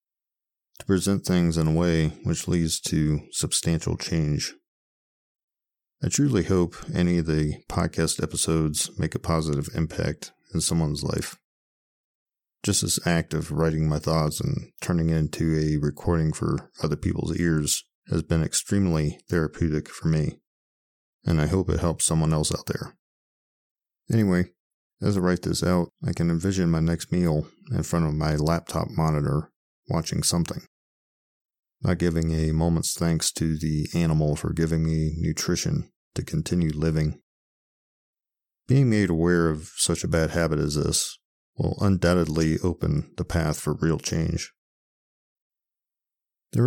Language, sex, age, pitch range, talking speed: English, male, 40-59, 75-85 Hz, 145 wpm